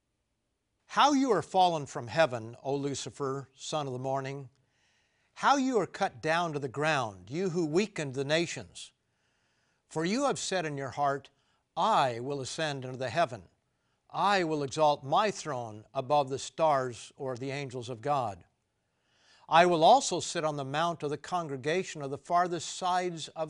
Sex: male